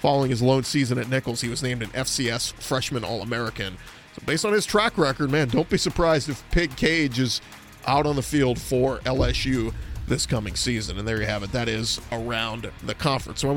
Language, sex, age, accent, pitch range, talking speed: English, male, 30-49, American, 125-165 Hz, 210 wpm